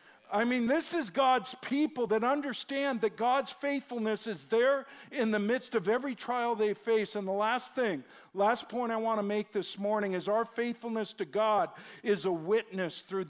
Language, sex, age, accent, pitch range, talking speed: English, male, 50-69, American, 190-235 Hz, 190 wpm